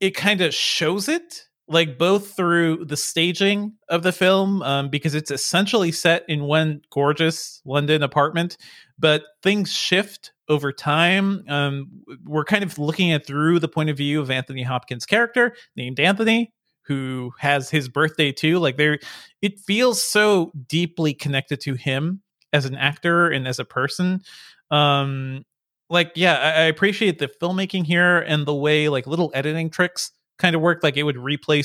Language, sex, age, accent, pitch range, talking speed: English, male, 30-49, American, 140-180 Hz, 165 wpm